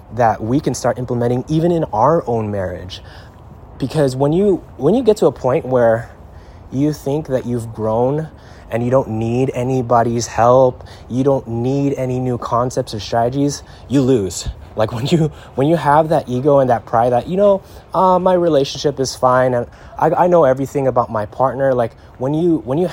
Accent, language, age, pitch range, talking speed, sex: American, English, 20-39, 110-140 Hz, 190 wpm, male